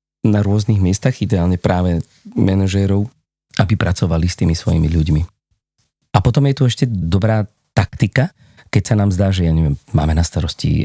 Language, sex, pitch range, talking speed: Slovak, male, 85-110 Hz, 160 wpm